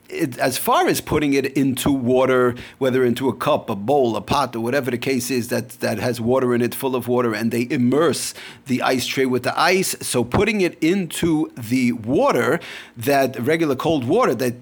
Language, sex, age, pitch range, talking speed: English, male, 40-59, 120-145 Hz, 210 wpm